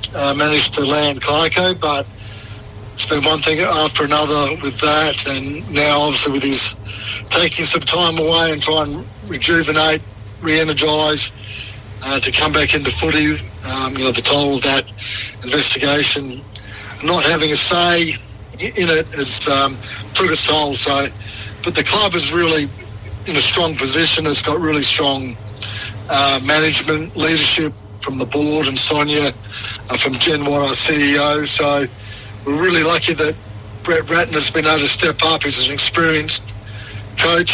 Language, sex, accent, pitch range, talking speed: English, male, Australian, 110-155 Hz, 150 wpm